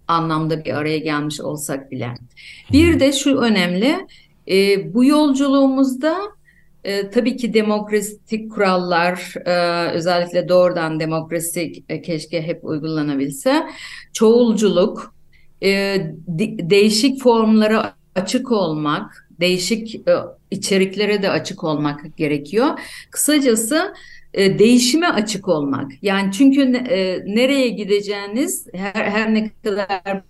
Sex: female